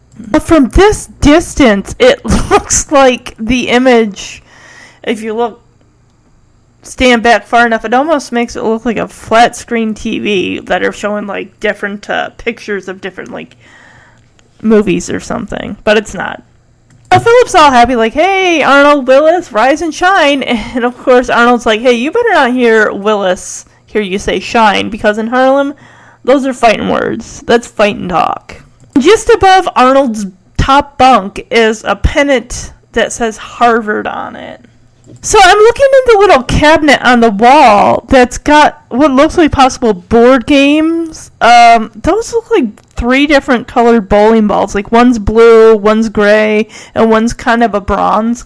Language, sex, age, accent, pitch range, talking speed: English, female, 20-39, American, 220-295 Hz, 160 wpm